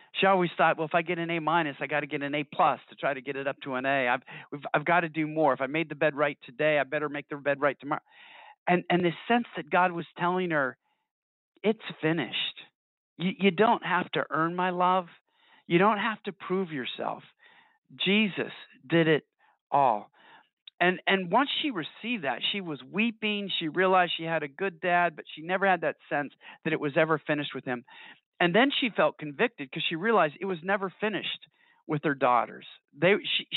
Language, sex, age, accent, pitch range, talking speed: English, male, 50-69, American, 155-200 Hz, 215 wpm